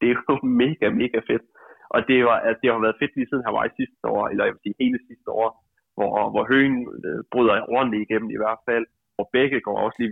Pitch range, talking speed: 115-160 Hz, 235 wpm